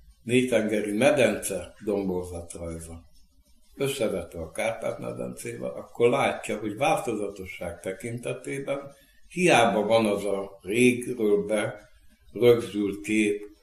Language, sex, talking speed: Hungarian, male, 95 wpm